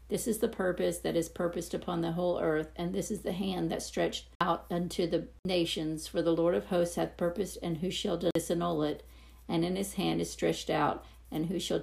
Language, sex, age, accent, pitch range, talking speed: English, female, 50-69, American, 150-175 Hz, 225 wpm